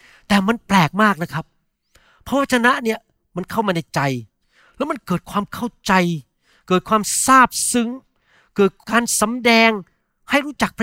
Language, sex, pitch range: Thai, male, 165-230 Hz